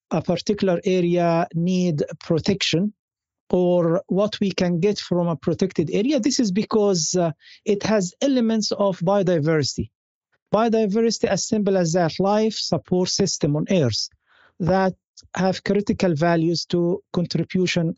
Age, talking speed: 50-69, 130 wpm